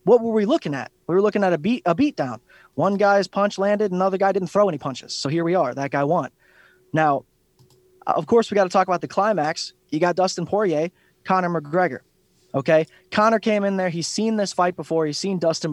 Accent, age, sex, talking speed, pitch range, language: American, 20-39, male, 225 wpm, 155-195 Hz, English